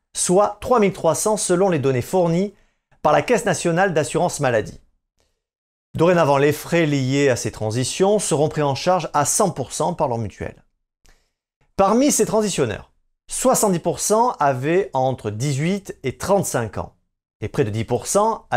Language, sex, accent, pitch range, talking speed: French, male, French, 120-195 Hz, 135 wpm